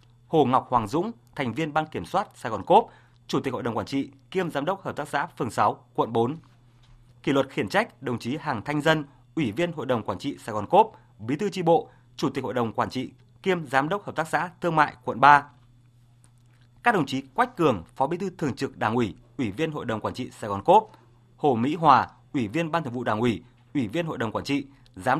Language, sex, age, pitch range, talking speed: Vietnamese, male, 20-39, 120-155 Hz, 250 wpm